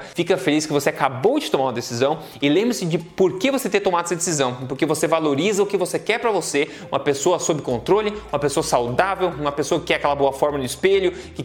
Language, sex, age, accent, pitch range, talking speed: Portuguese, male, 20-39, Brazilian, 140-180 Hz, 235 wpm